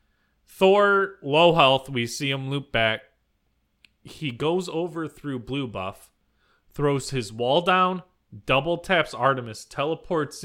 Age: 30-49